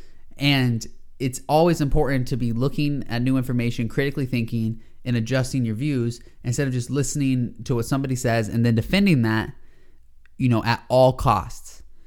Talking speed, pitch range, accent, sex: 165 wpm, 110-135 Hz, American, male